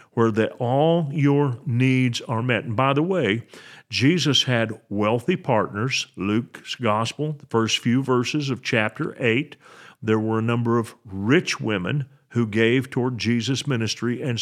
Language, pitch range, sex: English, 110-135 Hz, male